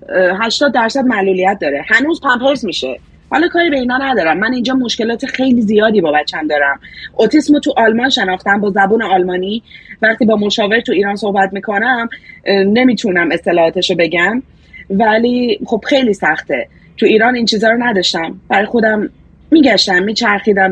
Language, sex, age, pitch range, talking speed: Persian, female, 30-49, 190-240 Hz, 150 wpm